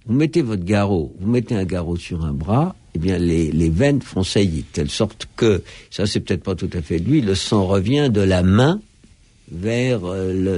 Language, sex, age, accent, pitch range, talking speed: French, male, 60-79, French, 95-140 Hz, 210 wpm